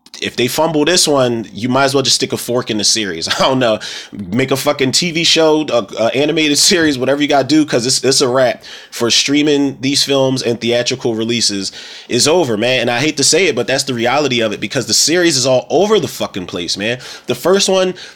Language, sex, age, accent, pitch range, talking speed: English, male, 30-49, American, 110-145 Hz, 240 wpm